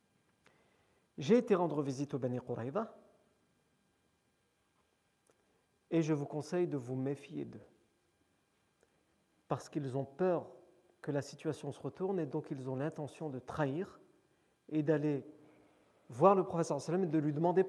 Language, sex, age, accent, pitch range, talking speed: French, male, 50-69, French, 150-195 Hz, 140 wpm